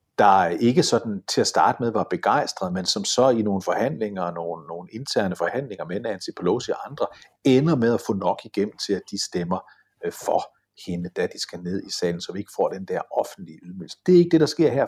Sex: male